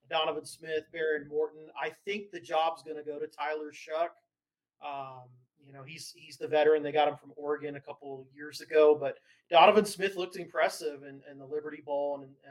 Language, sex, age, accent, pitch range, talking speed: English, male, 30-49, American, 145-170 Hz, 200 wpm